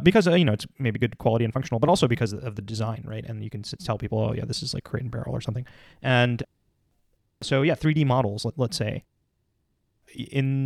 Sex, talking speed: male, 225 wpm